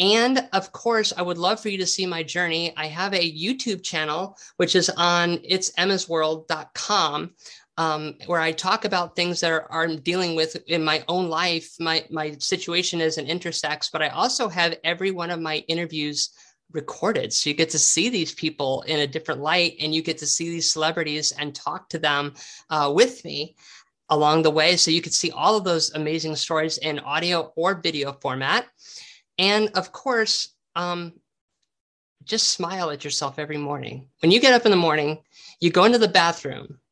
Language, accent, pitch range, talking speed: English, American, 155-185 Hz, 190 wpm